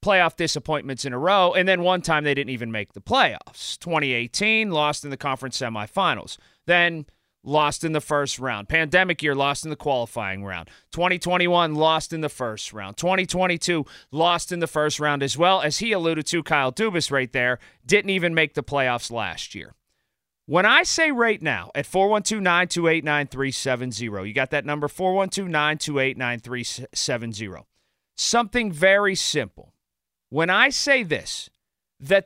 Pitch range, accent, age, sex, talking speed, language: 135-205 Hz, American, 30-49, male, 155 wpm, English